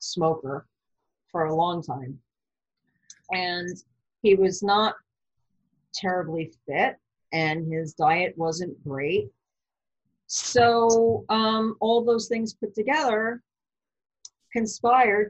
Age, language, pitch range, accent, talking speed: 50-69, English, 160-215 Hz, American, 95 wpm